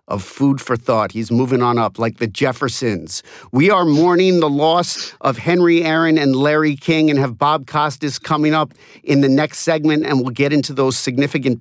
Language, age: English, 50-69